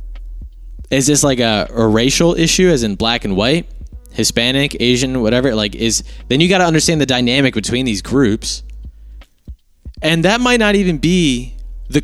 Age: 20-39